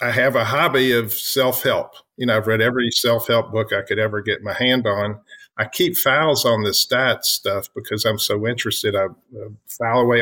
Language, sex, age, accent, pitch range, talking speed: English, male, 50-69, American, 110-130 Hz, 205 wpm